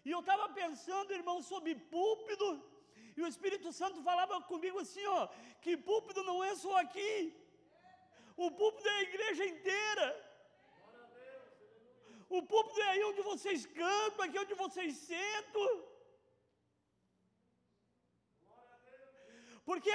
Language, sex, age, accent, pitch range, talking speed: Portuguese, male, 40-59, Brazilian, 360-420 Hz, 115 wpm